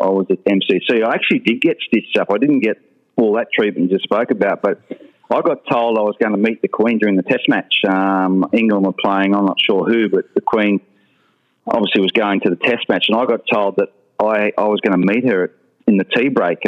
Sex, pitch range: male, 95-115 Hz